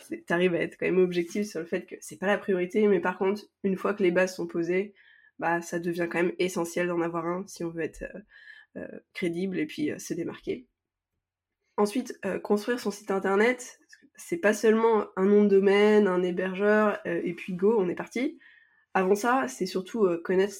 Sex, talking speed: female, 215 wpm